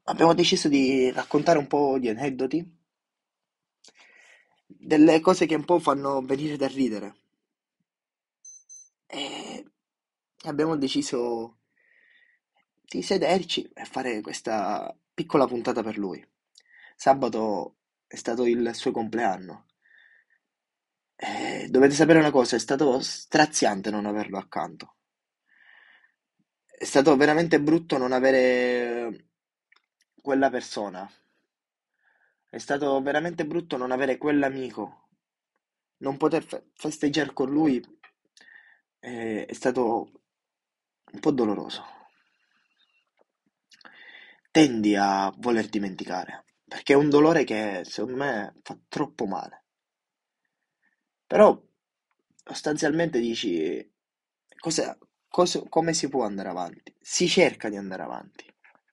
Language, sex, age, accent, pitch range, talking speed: Italian, male, 20-39, native, 120-160 Hz, 100 wpm